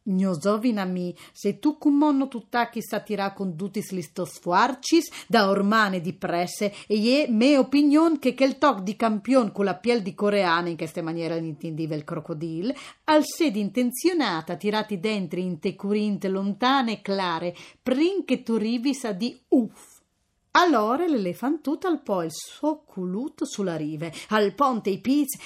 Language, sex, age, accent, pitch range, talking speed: Italian, female, 30-49, native, 195-290 Hz, 155 wpm